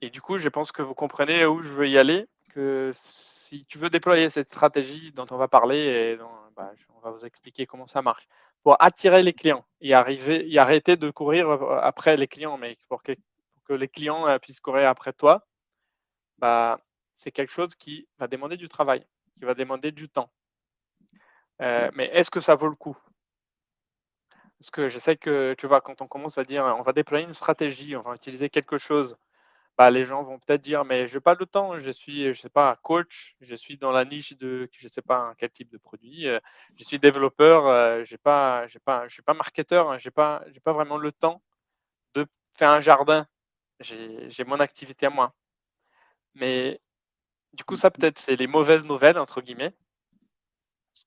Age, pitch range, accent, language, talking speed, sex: 20-39, 130-155 Hz, French, French, 200 wpm, male